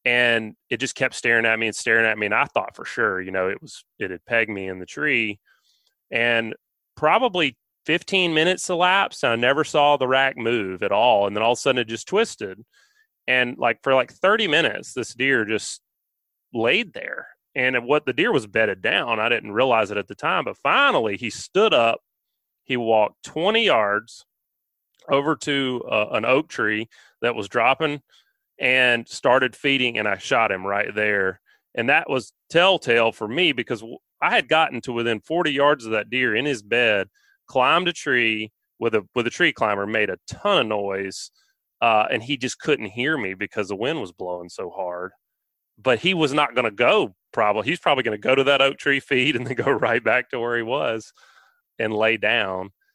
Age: 30-49